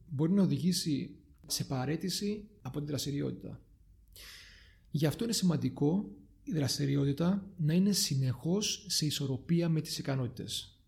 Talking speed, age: 120 wpm, 40-59